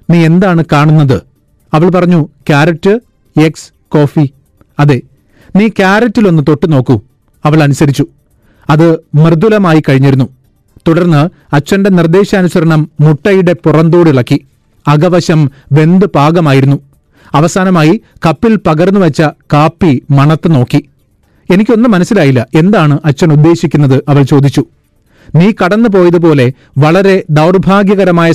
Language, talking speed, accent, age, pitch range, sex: Malayalam, 90 wpm, native, 40-59, 145-180 Hz, male